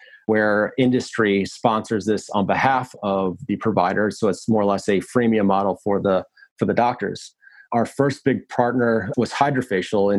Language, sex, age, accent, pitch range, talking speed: English, male, 30-49, American, 105-120 Hz, 170 wpm